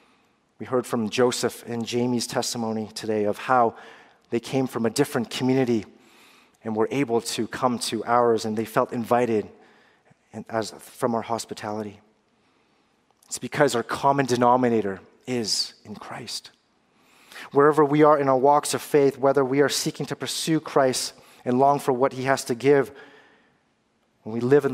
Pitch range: 115-140 Hz